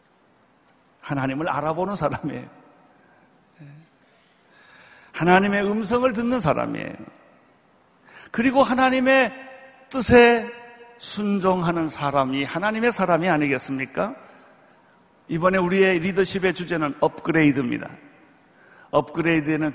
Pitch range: 175-230 Hz